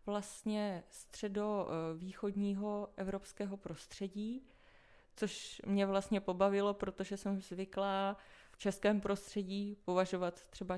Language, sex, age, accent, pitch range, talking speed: Czech, female, 20-39, native, 185-215 Hz, 90 wpm